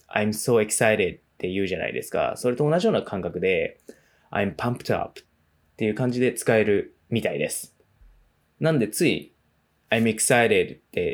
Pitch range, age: 105-160 Hz, 20-39